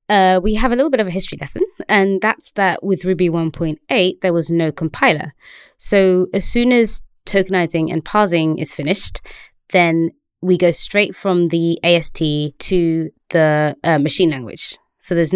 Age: 20-39